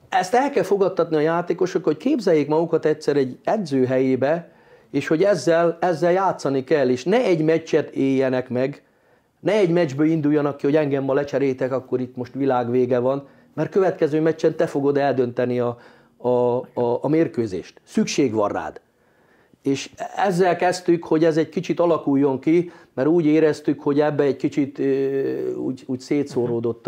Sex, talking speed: male, 160 wpm